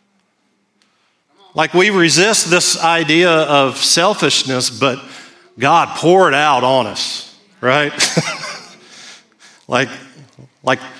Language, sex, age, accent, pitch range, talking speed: English, male, 40-59, American, 140-175 Hz, 95 wpm